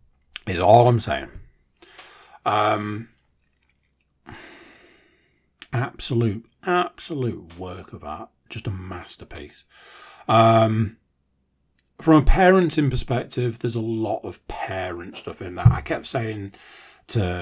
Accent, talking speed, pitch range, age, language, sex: British, 105 wpm, 90-140 Hz, 40-59, English, male